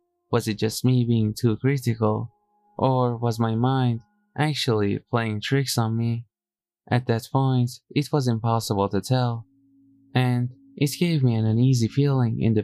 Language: English